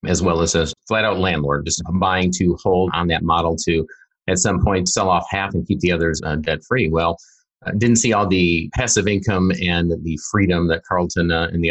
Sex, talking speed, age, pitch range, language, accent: male, 210 wpm, 30-49, 80-90 Hz, English, American